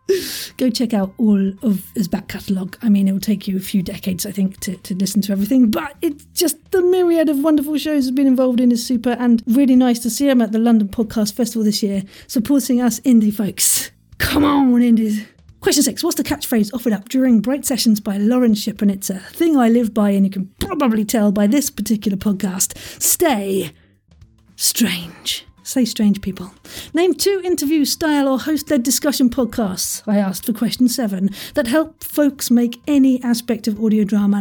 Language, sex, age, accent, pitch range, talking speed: English, female, 40-59, British, 210-280 Hz, 195 wpm